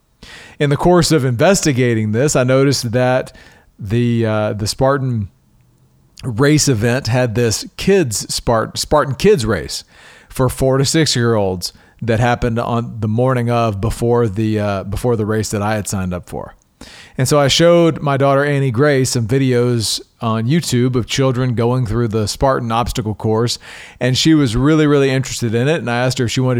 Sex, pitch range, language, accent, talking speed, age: male, 115-140 Hz, English, American, 180 wpm, 40-59